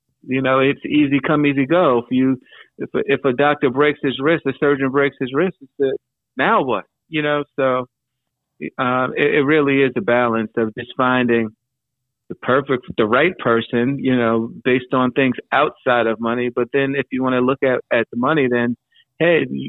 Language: English